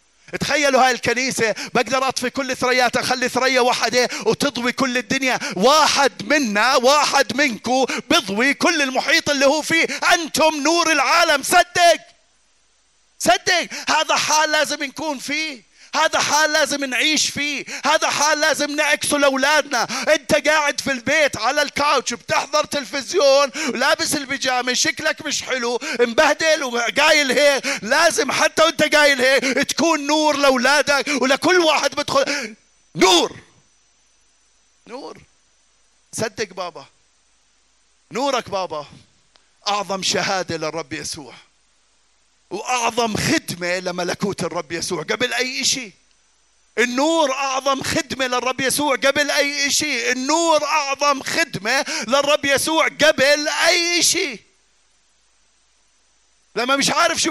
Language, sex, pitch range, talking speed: Arabic, male, 250-305 Hz, 115 wpm